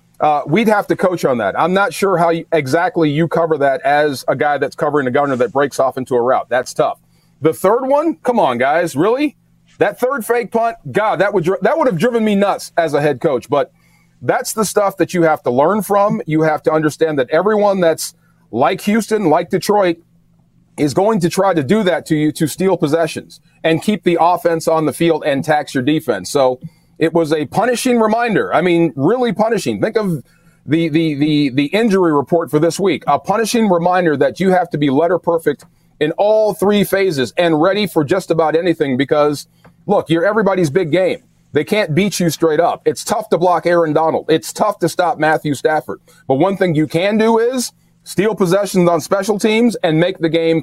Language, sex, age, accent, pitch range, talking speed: English, male, 40-59, American, 155-195 Hz, 215 wpm